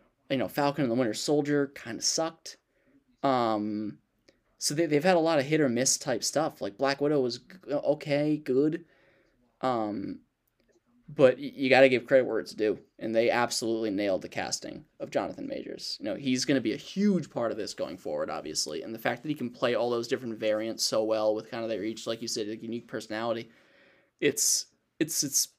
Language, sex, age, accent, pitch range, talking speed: English, male, 10-29, American, 115-150 Hz, 205 wpm